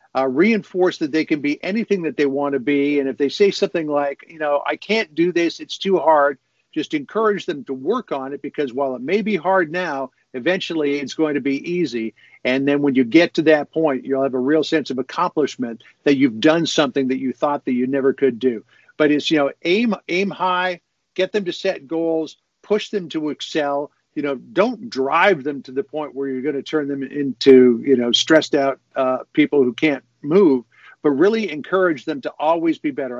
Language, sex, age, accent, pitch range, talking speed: English, male, 50-69, American, 135-180 Hz, 220 wpm